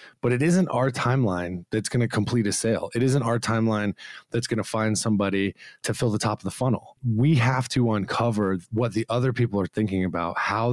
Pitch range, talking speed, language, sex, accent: 105-135 Hz, 220 wpm, English, male, American